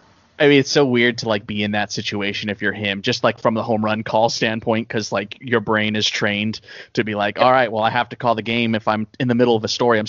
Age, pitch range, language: 20-39, 105-115 Hz, English